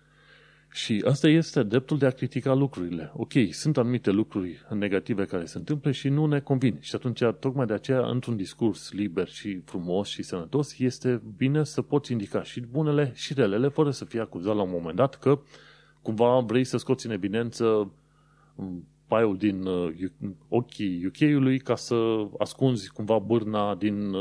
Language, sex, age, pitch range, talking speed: Romanian, male, 30-49, 105-140 Hz, 165 wpm